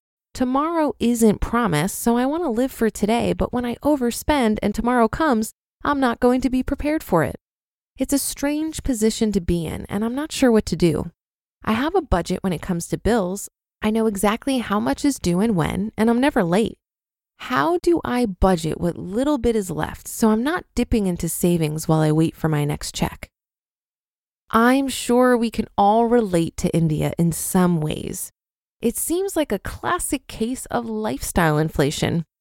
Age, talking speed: 20-39, 190 wpm